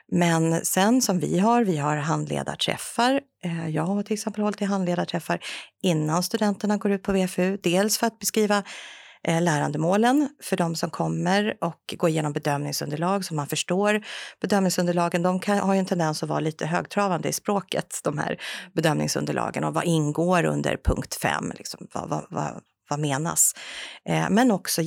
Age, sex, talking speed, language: 40-59, female, 160 wpm, Swedish